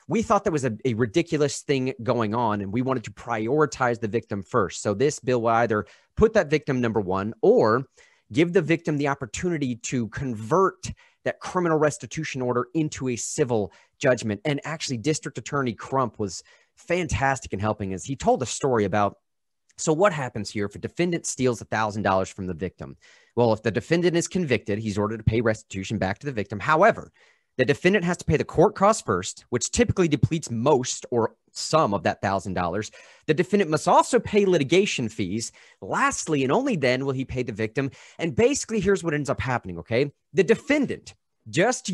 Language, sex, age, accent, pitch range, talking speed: English, male, 30-49, American, 110-180 Hz, 190 wpm